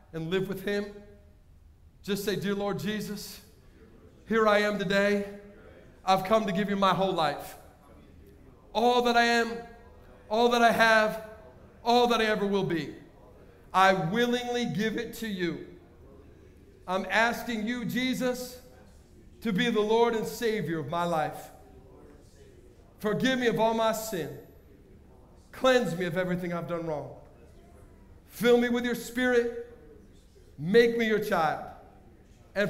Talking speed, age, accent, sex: 140 wpm, 50-69, American, male